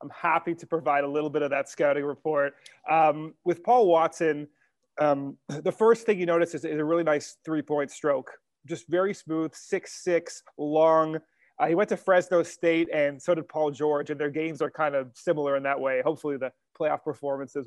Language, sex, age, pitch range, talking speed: English, male, 30-49, 145-170 Hz, 195 wpm